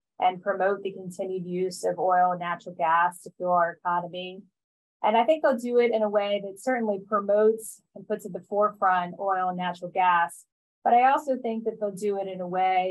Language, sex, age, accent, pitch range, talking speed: English, female, 20-39, American, 185-210 Hz, 215 wpm